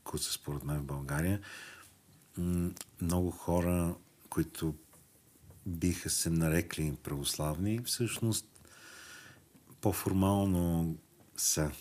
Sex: male